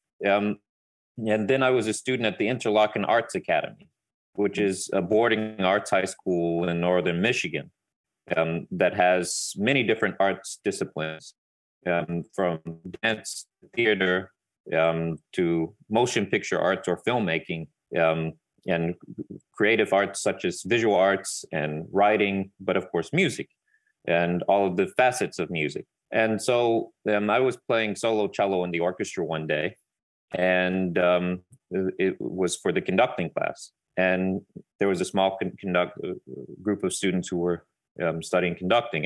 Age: 30-49